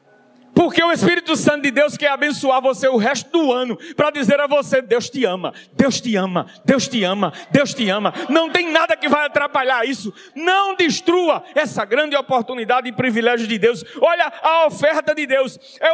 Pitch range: 210-315 Hz